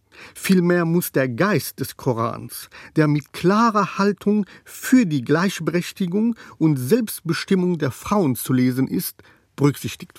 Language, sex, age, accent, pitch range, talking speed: German, male, 50-69, German, 135-180 Hz, 125 wpm